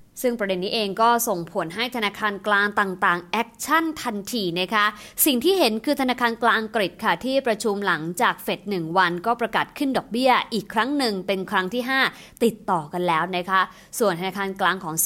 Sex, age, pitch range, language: female, 20-39, 180-230 Hz, English